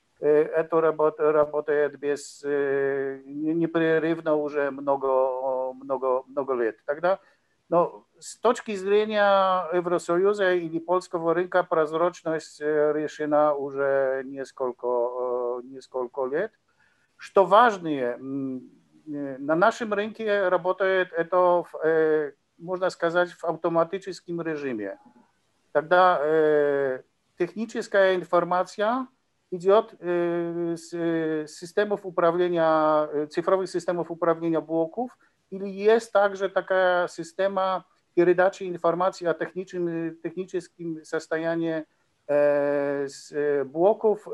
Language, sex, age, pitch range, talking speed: Ukrainian, male, 50-69, 150-185 Hz, 75 wpm